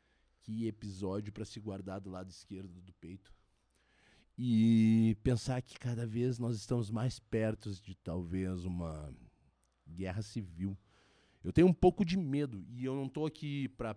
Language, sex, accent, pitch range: Portuguese, male, Brazilian, 90-135 Hz